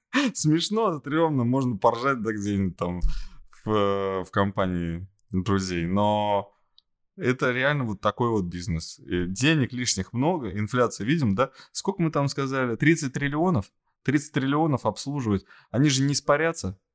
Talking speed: 130 wpm